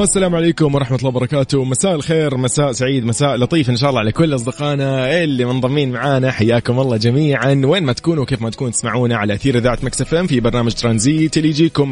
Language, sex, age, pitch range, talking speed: English, male, 20-39, 110-145 Hz, 195 wpm